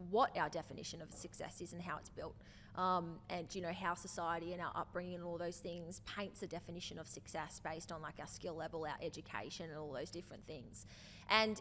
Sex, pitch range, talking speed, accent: female, 175-220 Hz, 215 wpm, Australian